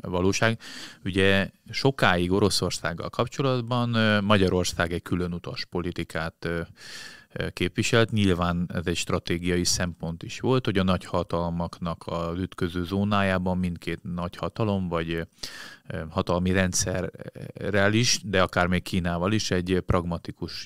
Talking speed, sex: 105 wpm, male